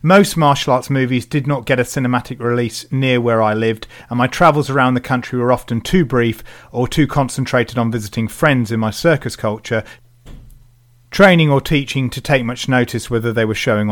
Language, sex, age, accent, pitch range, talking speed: English, male, 40-59, British, 115-135 Hz, 195 wpm